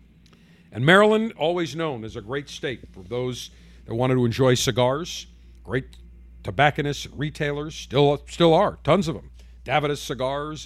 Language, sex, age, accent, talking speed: English, male, 50-69, American, 150 wpm